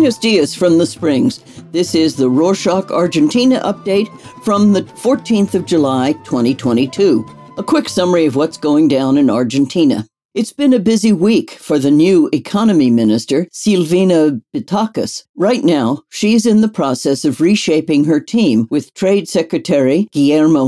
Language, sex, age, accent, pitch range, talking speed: English, female, 60-79, American, 155-215 Hz, 150 wpm